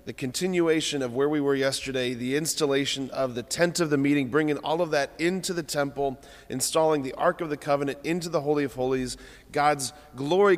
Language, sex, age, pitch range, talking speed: English, male, 30-49, 125-170 Hz, 200 wpm